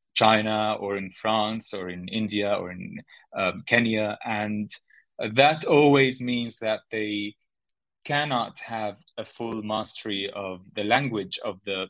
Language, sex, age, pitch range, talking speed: English, male, 20-39, 100-120 Hz, 135 wpm